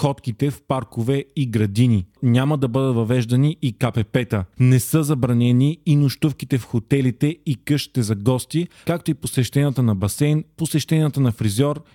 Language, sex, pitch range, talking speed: Bulgarian, male, 115-140 Hz, 150 wpm